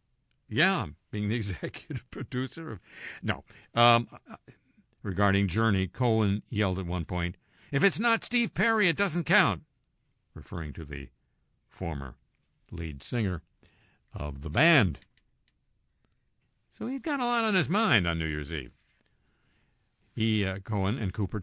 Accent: American